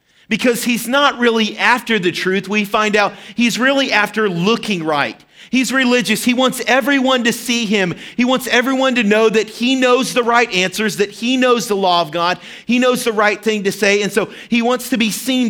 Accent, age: American, 40-59